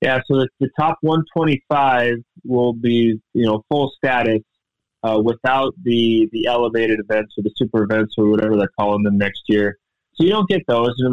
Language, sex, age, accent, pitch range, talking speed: English, male, 30-49, American, 115-140 Hz, 195 wpm